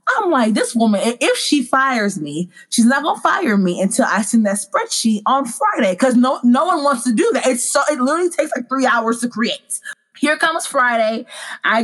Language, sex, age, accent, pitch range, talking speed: English, female, 20-39, American, 205-265 Hz, 220 wpm